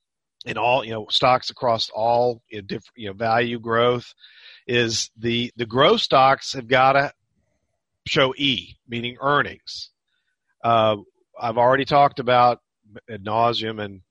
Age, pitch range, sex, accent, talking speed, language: 40-59, 115-145 Hz, male, American, 140 wpm, English